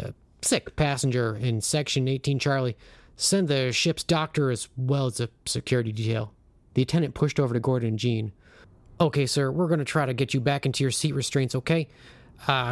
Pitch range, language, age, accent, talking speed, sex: 110-130 Hz, English, 30-49, American, 190 wpm, male